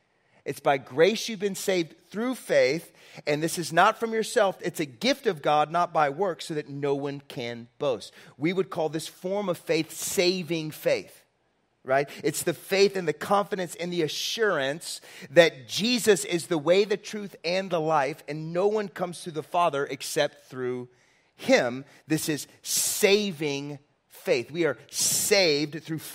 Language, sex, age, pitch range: English, male, 30-49, 150-195 Hz